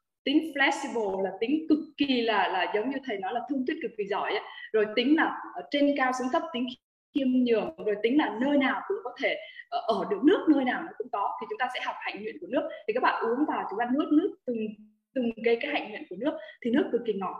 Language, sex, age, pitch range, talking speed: Vietnamese, female, 20-39, 235-330 Hz, 260 wpm